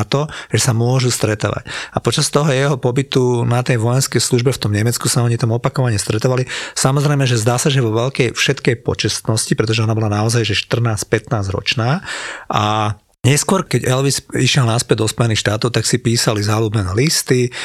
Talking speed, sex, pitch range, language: 175 wpm, male, 115-140 Hz, Slovak